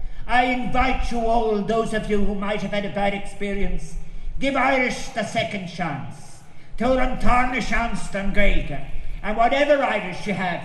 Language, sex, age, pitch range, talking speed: English, male, 50-69, 170-230 Hz, 135 wpm